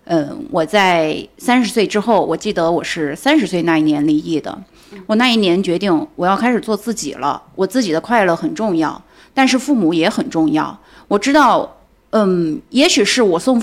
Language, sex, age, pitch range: Chinese, female, 30-49, 185-290 Hz